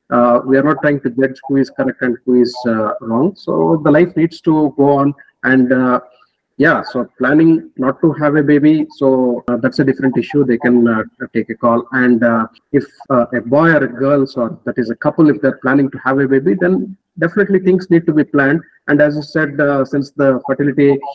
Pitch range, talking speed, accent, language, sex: 130-150 Hz, 225 wpm, Indian, English, male